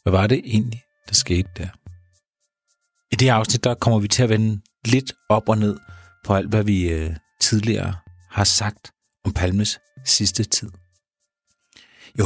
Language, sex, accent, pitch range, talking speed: Danish, male, native, 95-120 Hz, 155 wpm